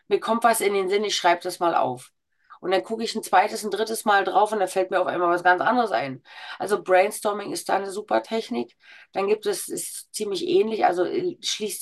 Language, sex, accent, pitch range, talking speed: German, female, German, 180-255 Hz, 235 wpm